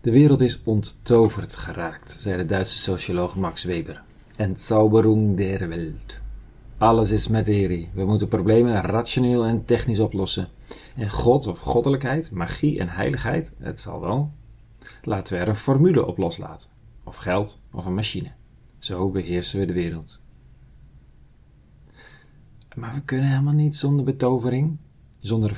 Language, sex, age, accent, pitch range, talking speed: Dutch, male, 40-59, Dutch, 95-125 Hz, 140 wpm